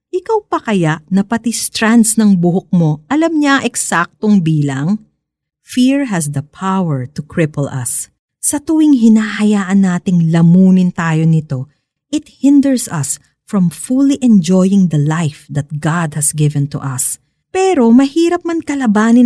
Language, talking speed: Filipino, 140 wpm